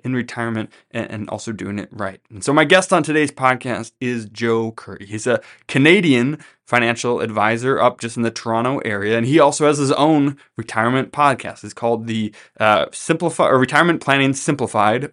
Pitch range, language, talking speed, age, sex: 110-135 Hz, English, 180 wpm, 20-39, male